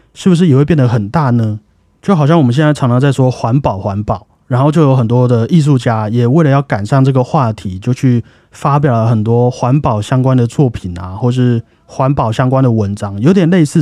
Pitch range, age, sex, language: 115-145 Hz, 30-49, male, Chinese